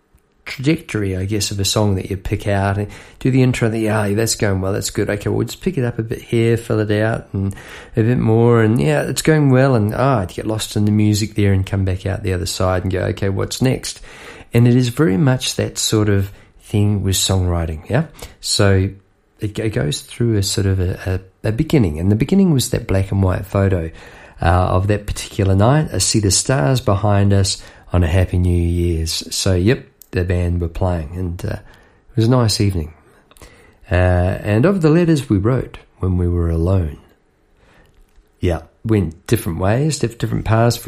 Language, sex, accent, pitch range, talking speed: English, male, Australian, 95-115 Hz, 215 wpm